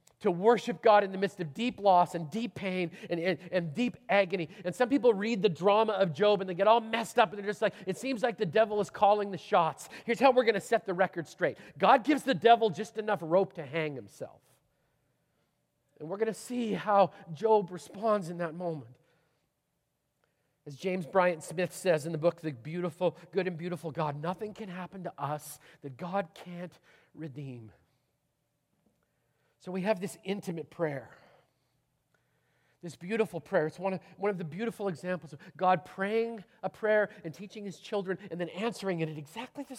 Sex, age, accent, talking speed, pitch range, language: male, 40-59, American, 195 wpm, 165-210 Hz, English